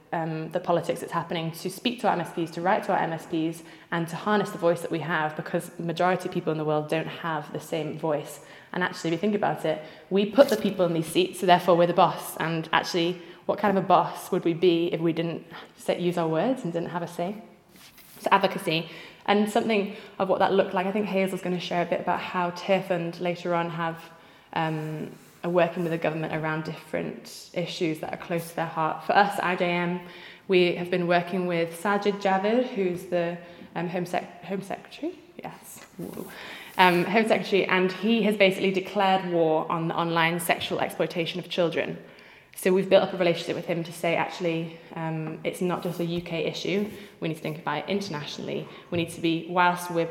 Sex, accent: female, British